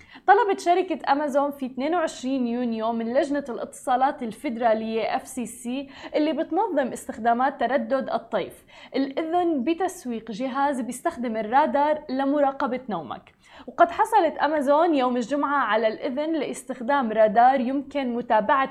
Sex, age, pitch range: female, 20-39, 240-295 Hz